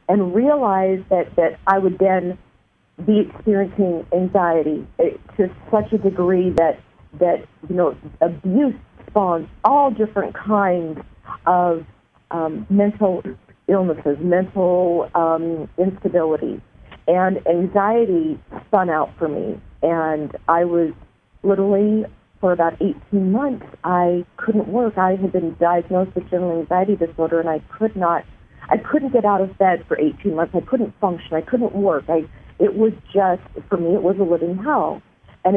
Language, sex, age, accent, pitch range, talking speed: English, female, 50-69, American, 170-210 Hz, 145 wpm